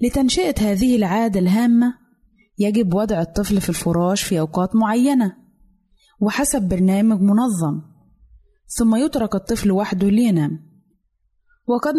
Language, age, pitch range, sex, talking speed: Arabic, 20-39, 185-235 Hz, female, 105 wpm